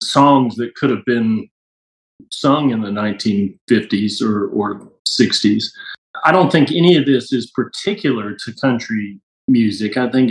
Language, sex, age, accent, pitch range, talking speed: English, male, 40-59, American, 110-135 Hz, 145 wpm